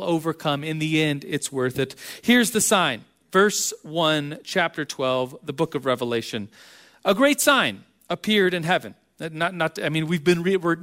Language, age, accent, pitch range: English, 40-59, American, 155-205 Hz